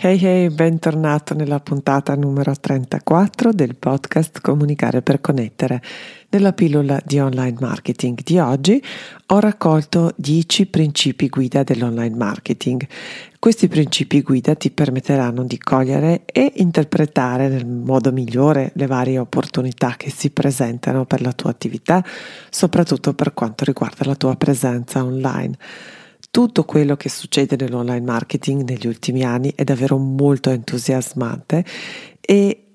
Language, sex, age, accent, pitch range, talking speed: Italian, female, 40-59, native, 135-165 Hz, 130 wpm